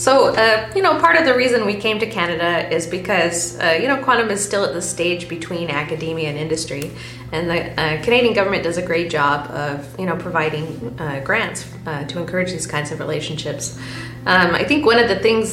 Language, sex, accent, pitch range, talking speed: English, female, American, 155-190 Hz, 215 wpm